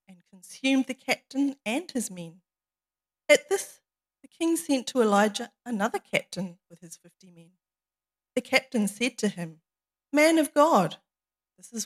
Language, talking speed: English, 150 wpm